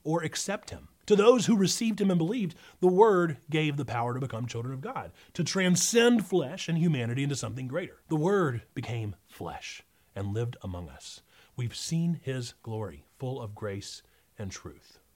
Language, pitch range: English, 125-185 Hz